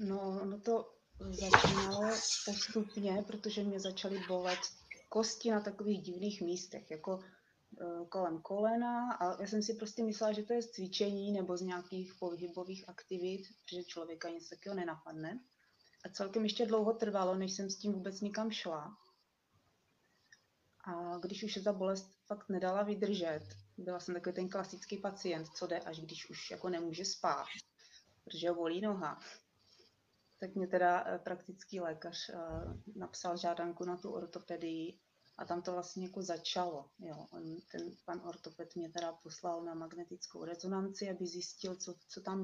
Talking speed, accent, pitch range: 155 wpm, native, 175-200 Hz